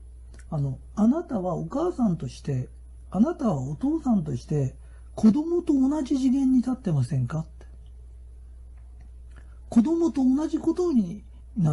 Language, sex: Japanese, male